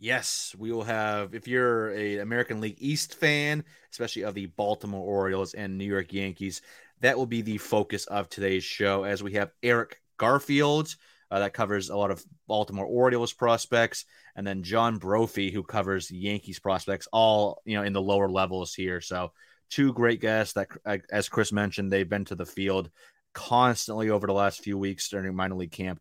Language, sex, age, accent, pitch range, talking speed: English, male, 30-49, American, 95-115 Hz, 185 wpm